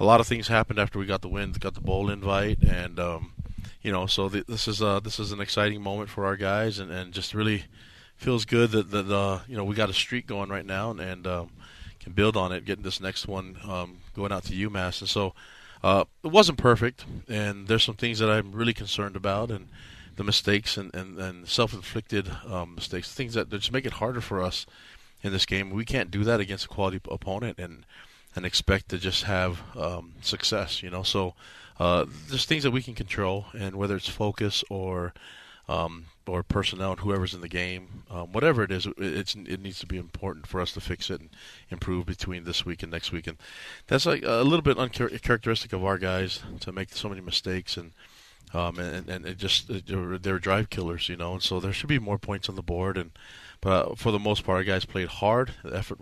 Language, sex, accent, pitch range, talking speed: English, male, American, 90-105 Hz, 225 wpm